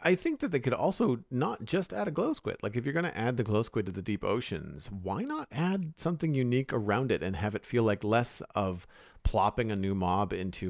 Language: English